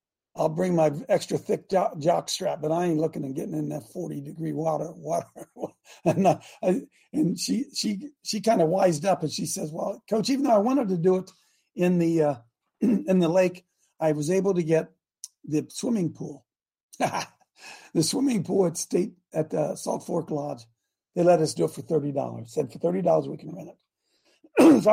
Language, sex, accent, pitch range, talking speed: English, male, American, 155-195 Hz, 195 wpm